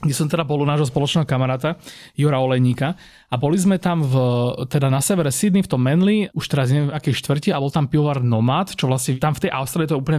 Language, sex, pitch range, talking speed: Slovak, male, 135-170 Hz, 245 wpm